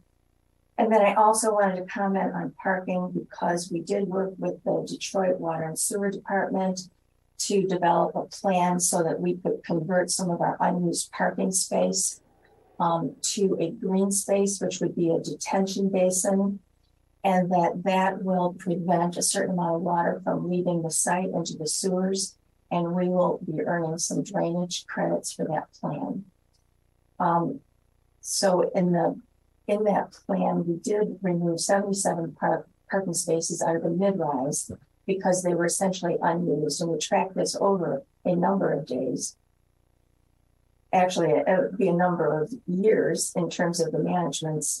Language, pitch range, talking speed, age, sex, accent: English, 160-195 Hz, 160 wpm, 50-69, female, American